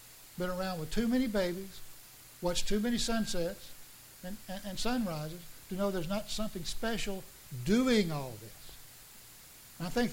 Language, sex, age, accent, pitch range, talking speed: English, male, 60-79, American, 160-195 Hz, 150 wpm